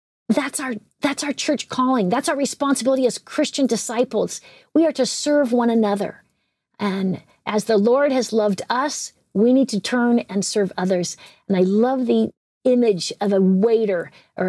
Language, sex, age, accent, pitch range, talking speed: English, female, 50-69, American, 195-250 Hz, 170 wpm